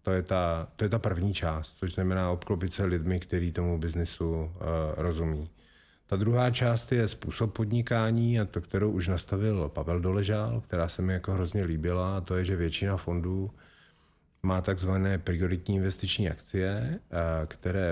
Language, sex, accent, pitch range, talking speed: Czech, male, native, 85-100 Hz, 150 wpm